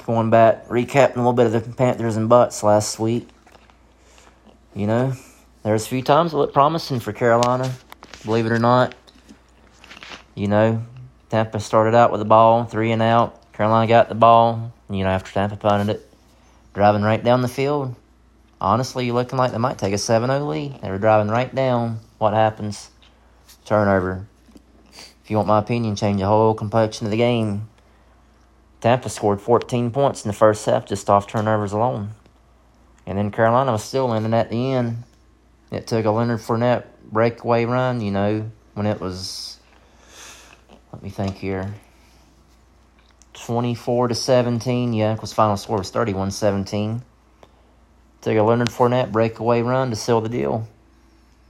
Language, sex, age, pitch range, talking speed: English, male, 30-49, 100-120 Hz, 165 wpm